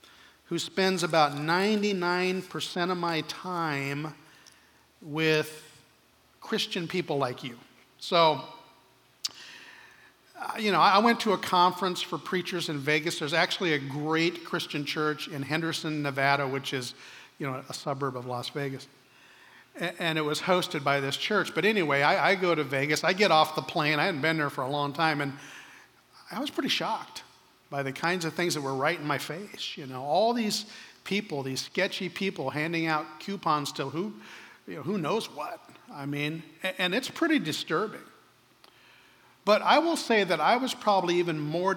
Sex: male